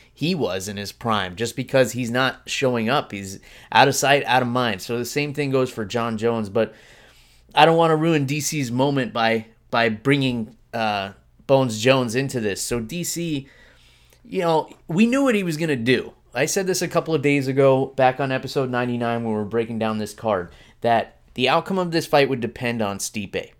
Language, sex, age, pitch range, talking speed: English, male, 20-39, 115-145 Hz, 210 wpm